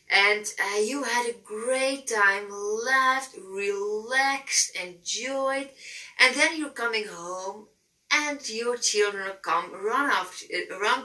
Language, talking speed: English, 120 wpm